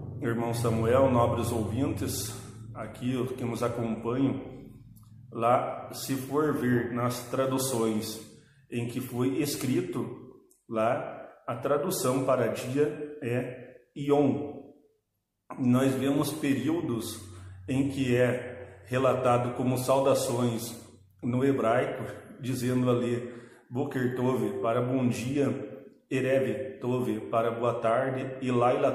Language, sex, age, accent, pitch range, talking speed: Portuguese, male, 40-59, Brazilian, 120-135 Hz, 100 wpm